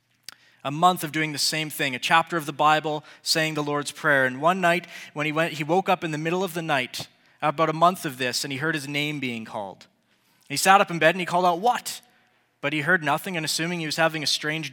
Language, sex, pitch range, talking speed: English, male, 150-185 Hz, 260 wpm